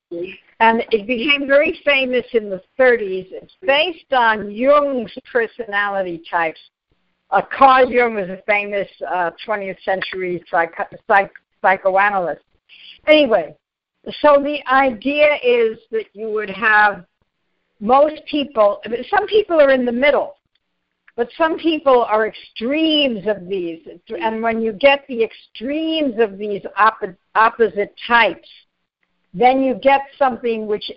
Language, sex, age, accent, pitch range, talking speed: English, female, 60-79, American, 210-275 Hz, 120 wpm